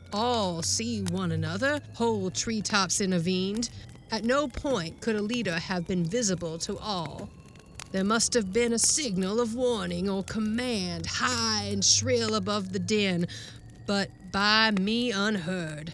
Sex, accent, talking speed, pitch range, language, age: female, American, 145 wpm, 175-230 Hz, English, 40-59